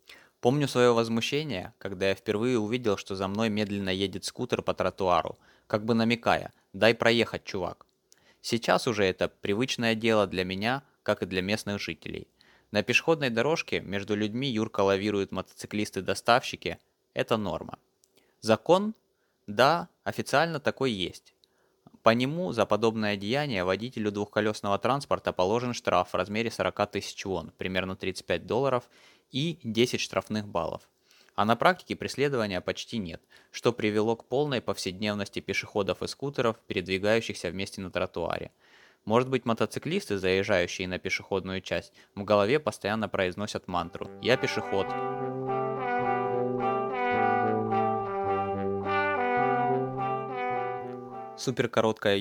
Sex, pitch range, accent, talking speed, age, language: male, 100-125 Hz, native, 120 wpm, 20-39, Russian